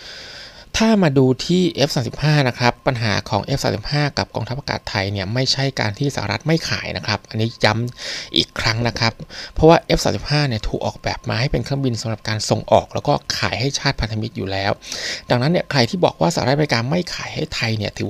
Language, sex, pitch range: Thai, male, 110-140 Hz